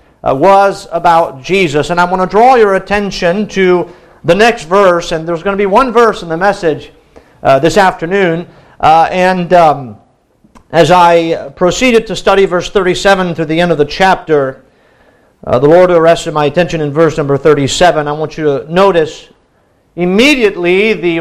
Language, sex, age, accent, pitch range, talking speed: English, male, 50-69, American, 165-205 Hz, 170 wpm